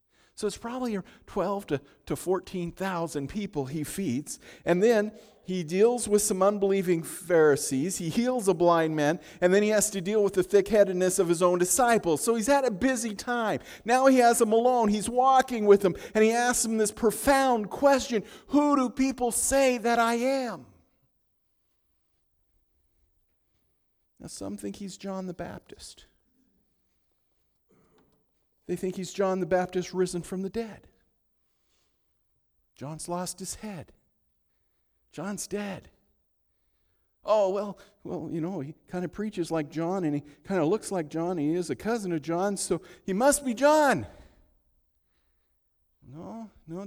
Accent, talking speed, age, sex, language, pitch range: American, 150 wpm, 50-69, male, English, 155-220 Hz